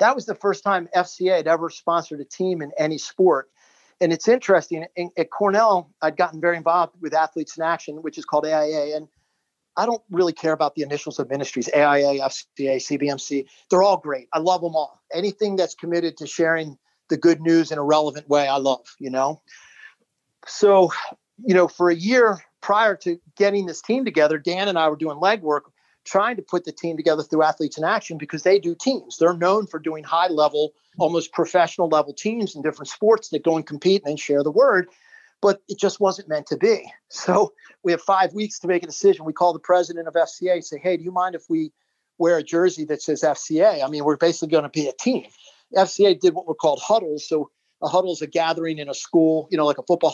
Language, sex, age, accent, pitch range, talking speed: English, male, 40-59, American, 155-185 Hz, 220 wpm